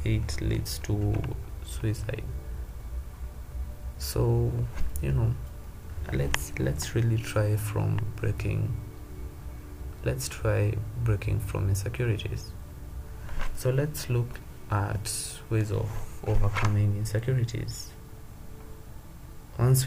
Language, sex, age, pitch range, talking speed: English, male, 20-39, 95-110 Hz, 80 wpm